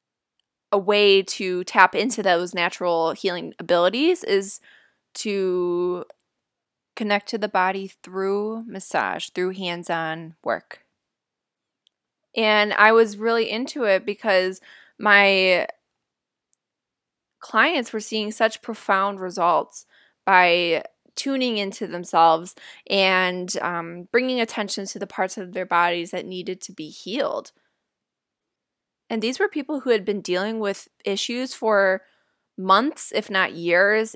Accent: American